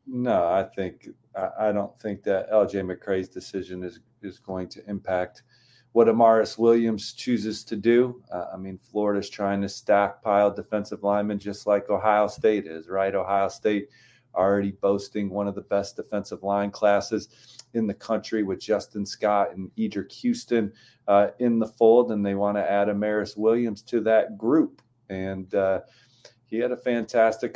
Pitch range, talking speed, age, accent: 100-115 Hz, 165 wpm, 40-59, American